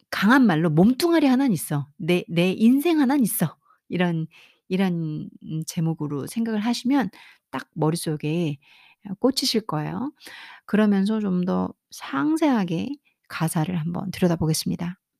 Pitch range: 165-220 Hz